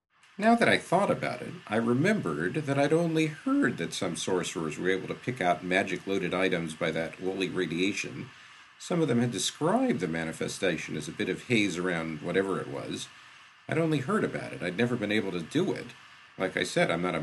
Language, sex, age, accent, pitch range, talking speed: English, male, 50-69, American, 95-140 Hz, 210 wpm